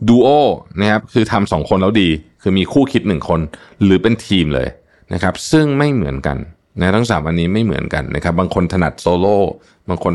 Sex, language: male, Thai